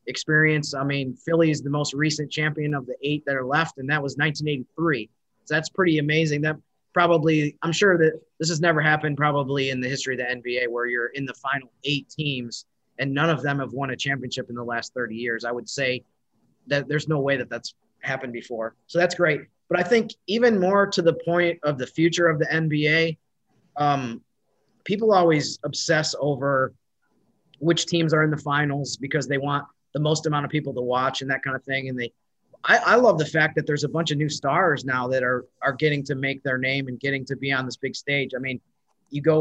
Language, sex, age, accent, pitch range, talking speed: English, male, 30-49, American, 130-160 Hz, 225 wpm